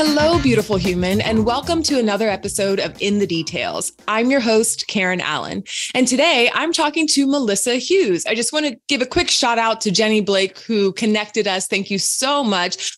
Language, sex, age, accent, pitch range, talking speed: English, female, 20-39, American, 200-285 Hz, 200 wpm